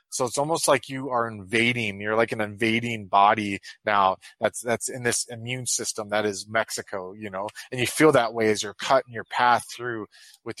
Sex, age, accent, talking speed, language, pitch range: male, 30-49, American, 205 wpm, English, 110-130 Hz